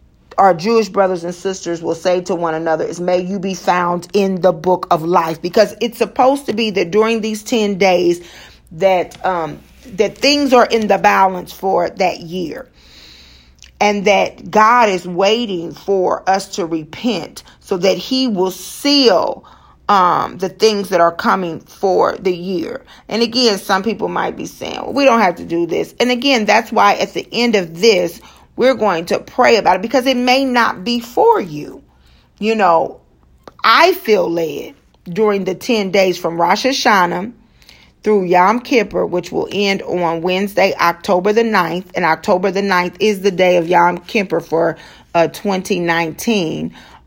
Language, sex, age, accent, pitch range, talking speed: English, female, 40-59, American, 175-220 Hz, 170 wpm